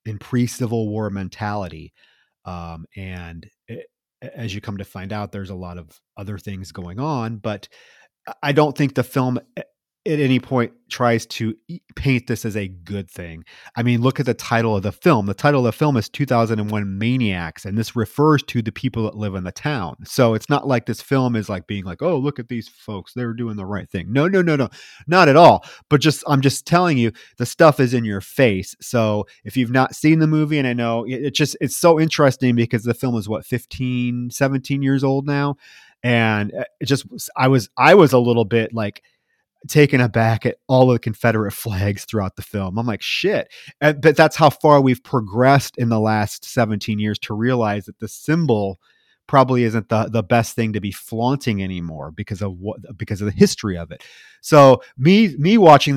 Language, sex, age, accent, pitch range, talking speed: English, male, 30-49, American, 105-135 Hz, 210 wpm